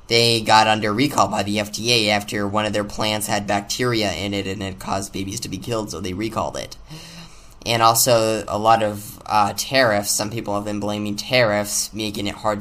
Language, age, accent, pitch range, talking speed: English, 10-29, American, 100-120 Hz, 205 wpm